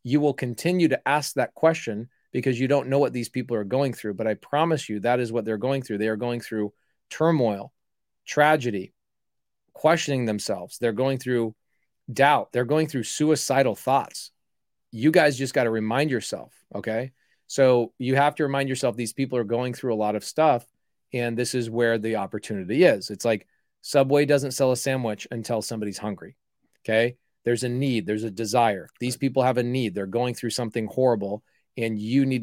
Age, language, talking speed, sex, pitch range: 30-49, English, 190 wpm, male, 110-135 Hz